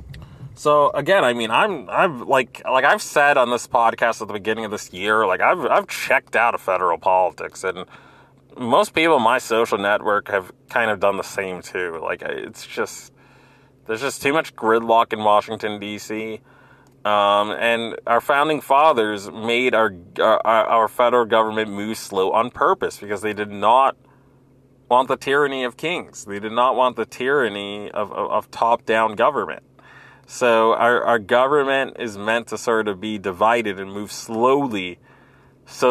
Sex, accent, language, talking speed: male, American, English, 170 wpm